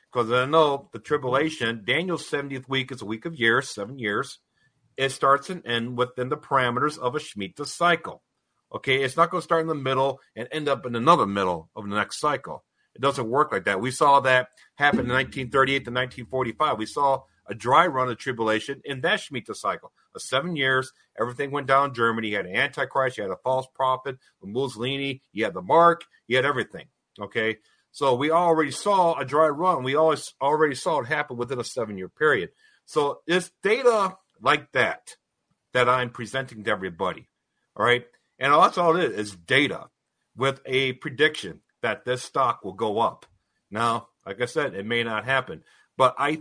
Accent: American